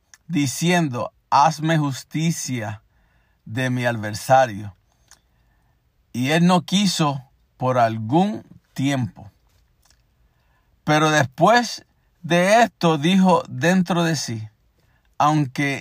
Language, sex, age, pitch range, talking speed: Spanish, male, 50-69, 130-175 Hz, 85 wpm